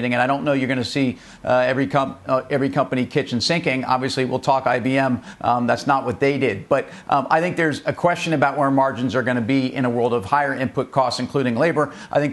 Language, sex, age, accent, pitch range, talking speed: English, male, 50-69, American, 130-150 Hz, 250 wpm